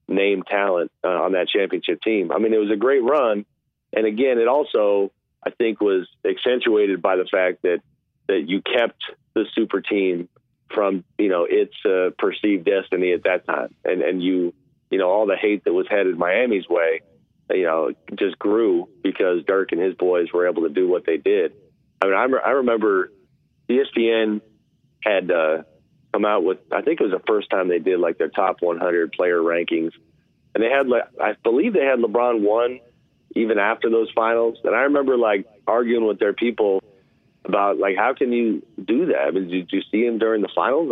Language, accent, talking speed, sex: English, American, 200 wpm, male